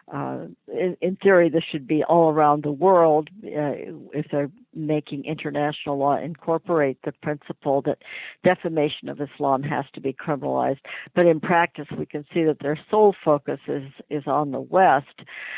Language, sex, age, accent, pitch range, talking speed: English, female, 60-79, American, 145-170 Hz, 165 wpm